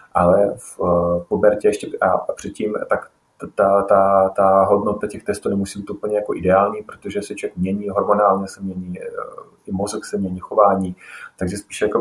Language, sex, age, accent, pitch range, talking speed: Czech, male, 30-49, native, 95-115 Hz, 165 wpm